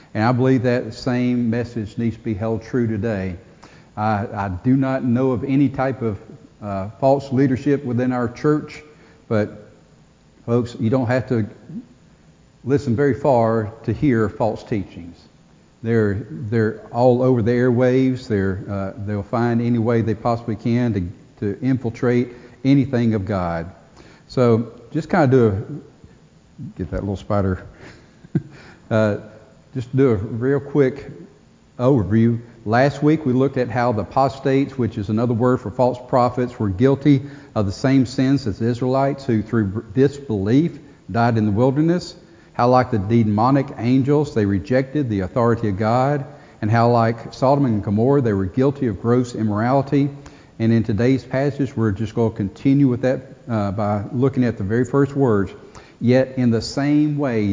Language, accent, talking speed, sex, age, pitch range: English, American, 165 wpm, male, 50-69, 110-135 Hz